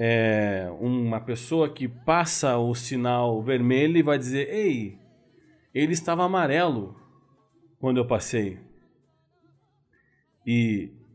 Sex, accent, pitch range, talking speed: male, Brazilian, 125-175 Hz, 95 wpm